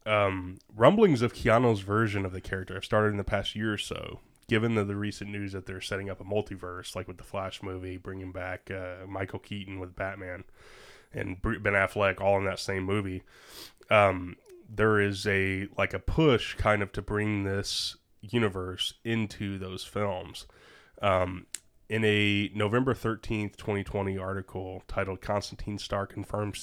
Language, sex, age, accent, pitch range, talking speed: English, male, 20-39, American, 95-110 Hz, 165 wpm